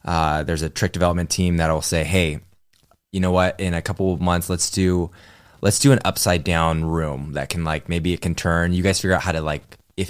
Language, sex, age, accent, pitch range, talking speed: English, male, 20-39, American, 80-95 Hz, 240 wpm